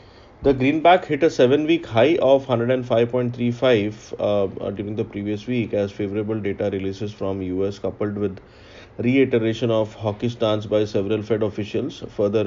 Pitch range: 95-110 Hz